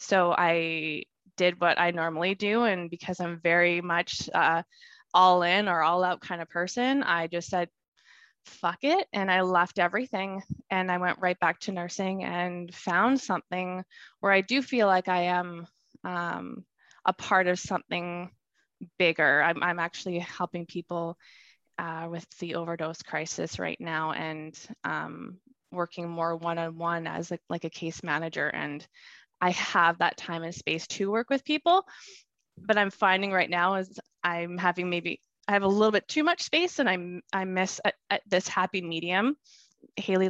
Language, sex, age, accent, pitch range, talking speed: English, female, 20-39, American, 170-215 Hz, 170 wpm